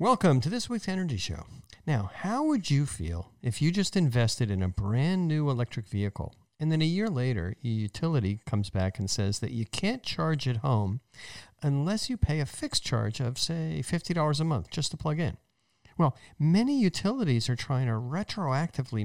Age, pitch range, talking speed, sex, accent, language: 50-69, 115-160 Hz, 190 wpm, male, American, English